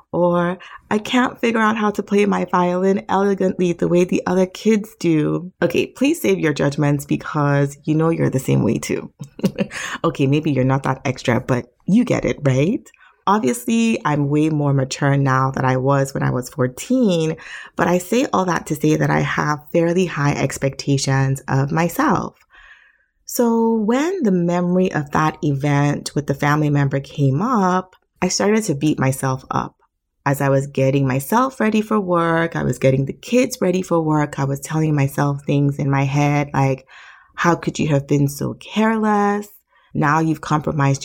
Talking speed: 180 wpm